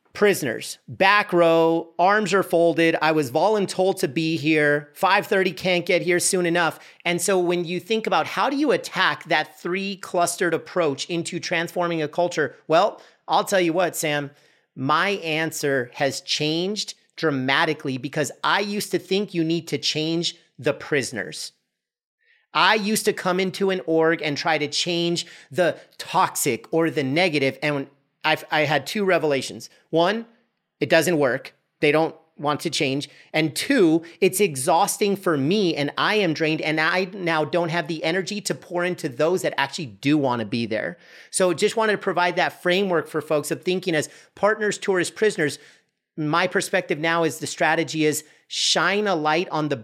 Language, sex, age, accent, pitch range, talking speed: English, male, 40-59, American, 150-185 Hz, 175 wpm